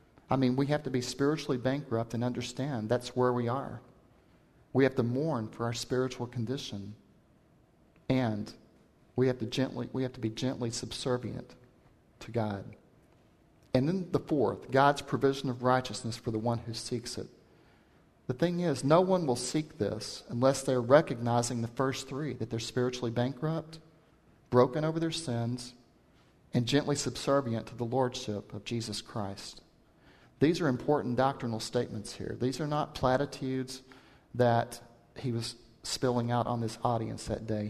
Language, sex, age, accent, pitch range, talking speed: English, male, 40-59, American, 115-135 Hz, 160 wpm